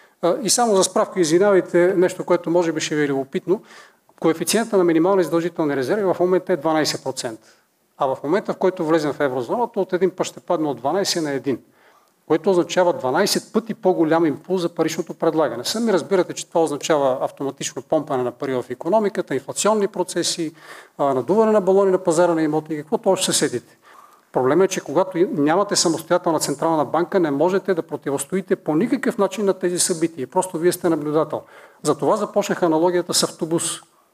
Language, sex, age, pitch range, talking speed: Bulgarian, male, 40-59, 160-195 Hz, 180 wpm